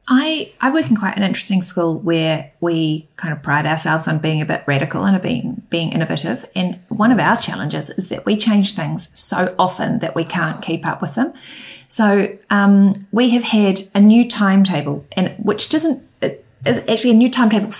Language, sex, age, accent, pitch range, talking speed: English, female, 30-49, Australian, 170-225 Hz, 200 wpm